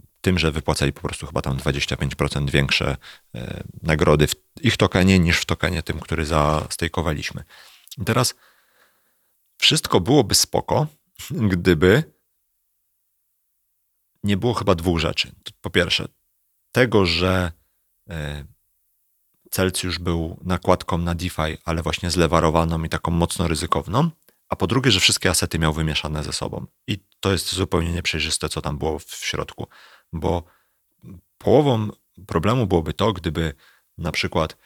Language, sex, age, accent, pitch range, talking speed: Polish, male, 30-49, native, 80-95 Hz, 125 wpm